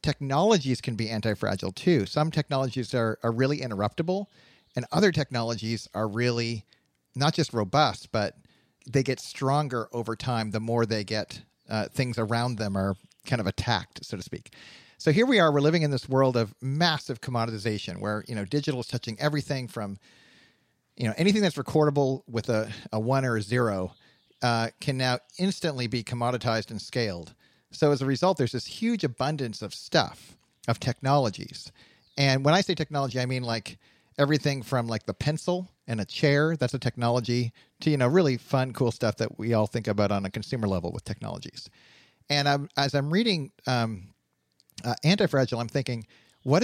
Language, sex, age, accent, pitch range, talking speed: English, male, 40-59, American, 115-145 Hz, 180 wpm